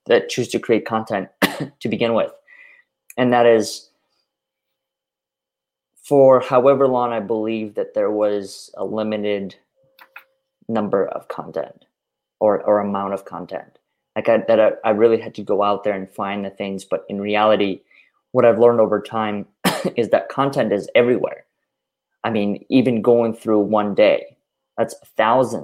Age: 20-39